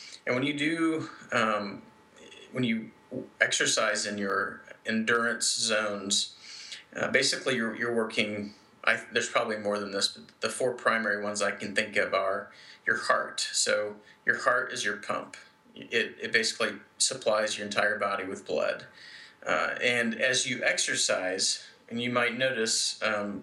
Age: 30-49